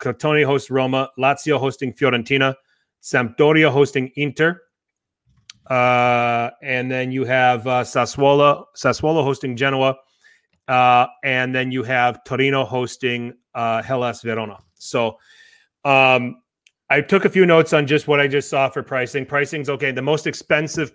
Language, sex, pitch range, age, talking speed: English, male, 125-145 Hz, 30-49, 140 wpm